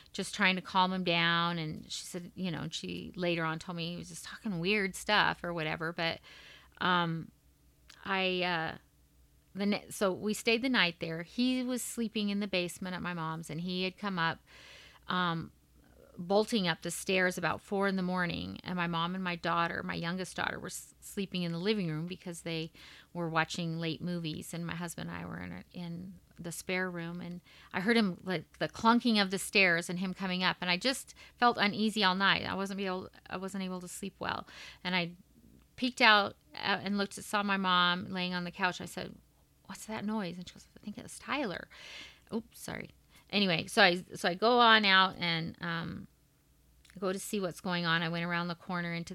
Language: English